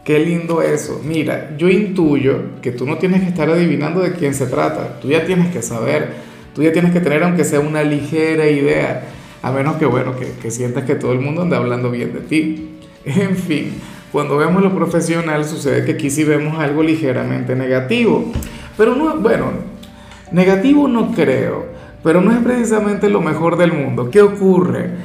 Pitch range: 135-170 Hz